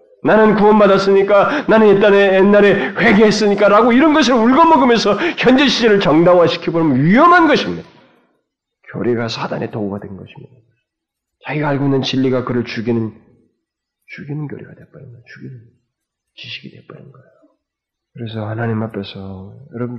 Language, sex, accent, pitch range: Korean, male, native, 105-165 Hz